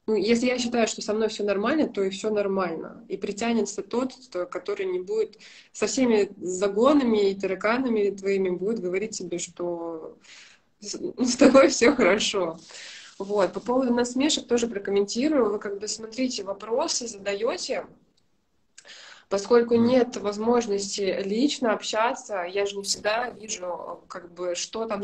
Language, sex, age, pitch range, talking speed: Russian, female, 20-39, 185-225 Hz, 135 wpm